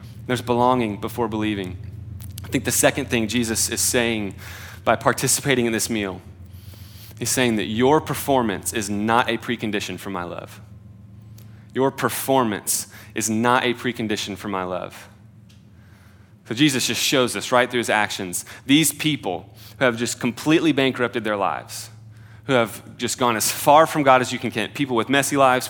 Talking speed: 170 wpm